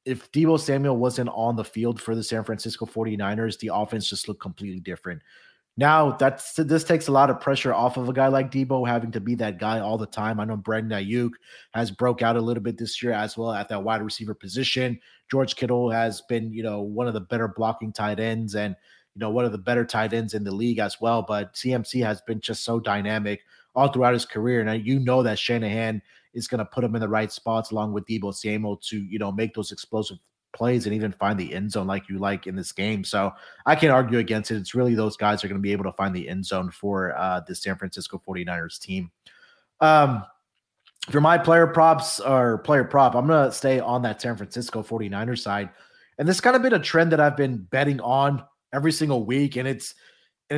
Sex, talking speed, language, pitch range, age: male, 230 wpm, English, 105-130 Hz, 30-49